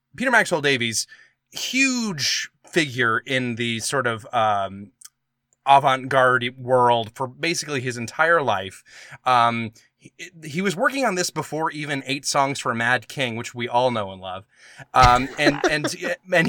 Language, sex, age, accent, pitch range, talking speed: English, male, 20-39, American, 125-155 Hz, 155 wpm